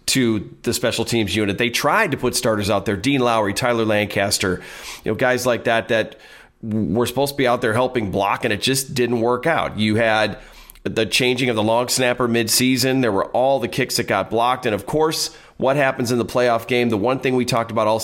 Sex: male